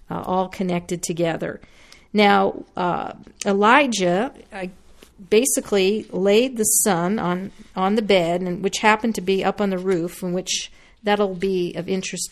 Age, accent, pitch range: 50-69, American, 185-220 Hz